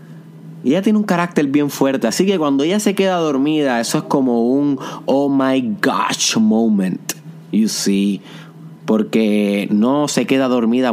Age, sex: 30-49, male